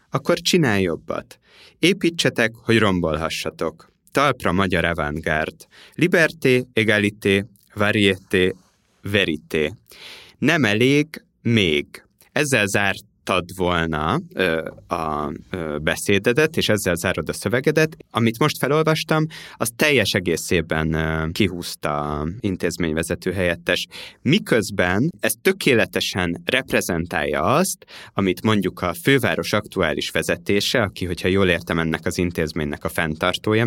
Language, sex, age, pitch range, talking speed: Hungarian, male, 30-49, 85-115 Hz, 100 wpm